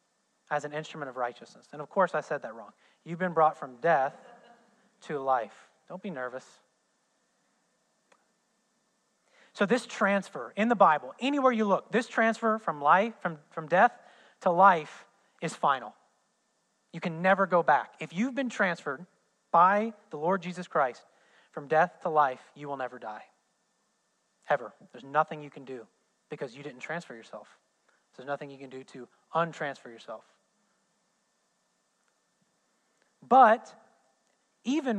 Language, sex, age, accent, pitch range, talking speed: English, male, 30-49, American, 145-195 Hz, 145 wpm